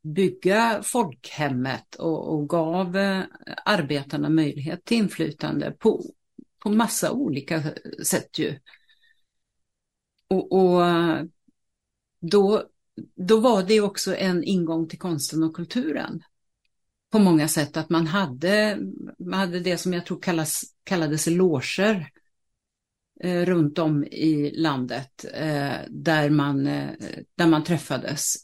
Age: 50-69